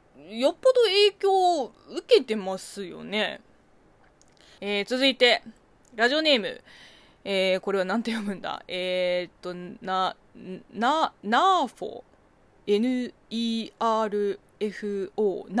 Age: 20-39